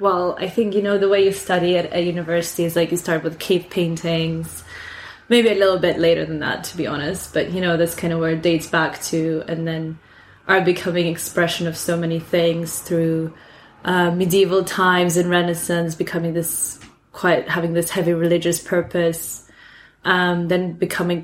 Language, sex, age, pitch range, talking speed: English, female, 20-39, 170-185 Hz, 185 wpm